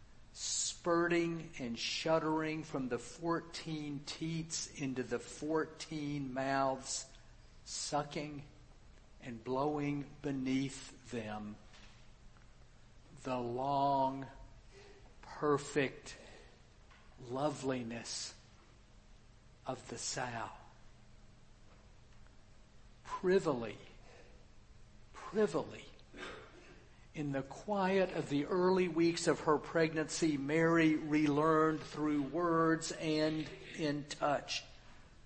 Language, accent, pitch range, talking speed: English, American, 120-155 Hz, 70 wpm